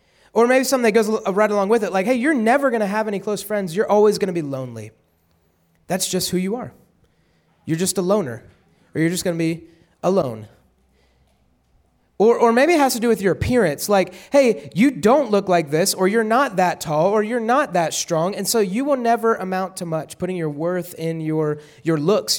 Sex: male